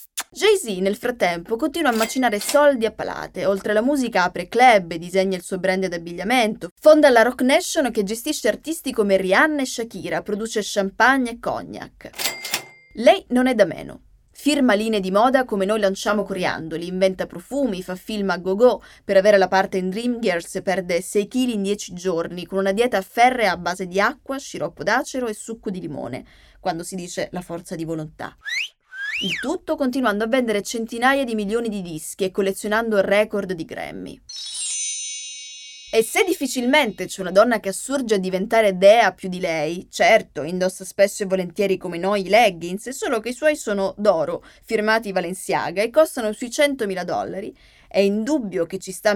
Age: 20-39